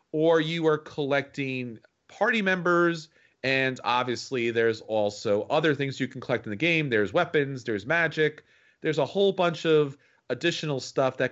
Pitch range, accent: 120-160 Hz, American